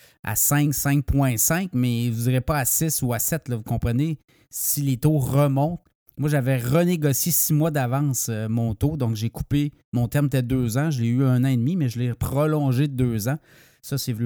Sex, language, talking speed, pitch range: male, French, 220 wpm, 130-170 Hz